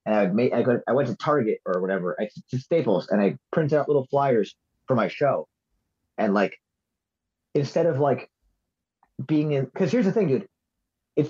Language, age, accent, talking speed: English, 30-49, American, 170 wpm